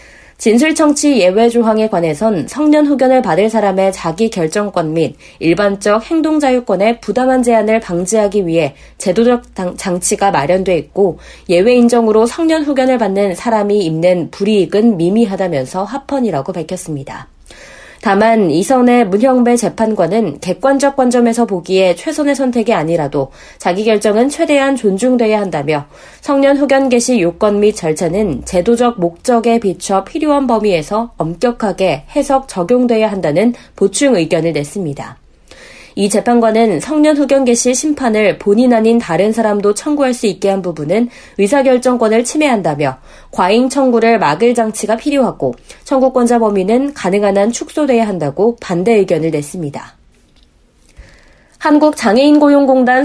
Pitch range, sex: 190-250 Hz, female